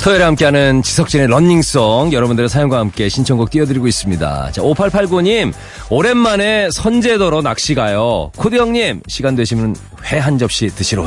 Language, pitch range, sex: Korean, 95-145 Hz, male